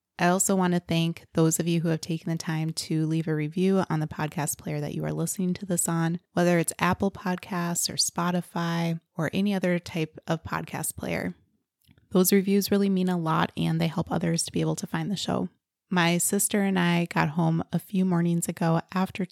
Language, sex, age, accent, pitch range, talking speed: English, female, 20-39, American, 165-185 Hz, 215 wpm